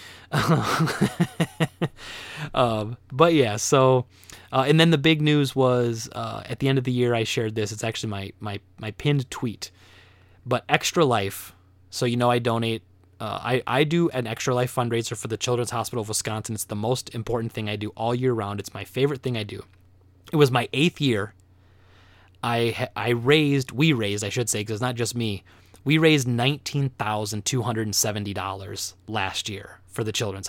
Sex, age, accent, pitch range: male, 20-39, American, 100-135 Hz